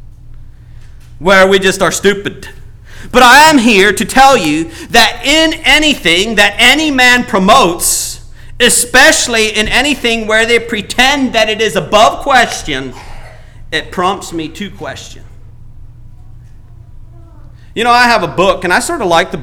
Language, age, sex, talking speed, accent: English, 40-59, male, 145 wpm, American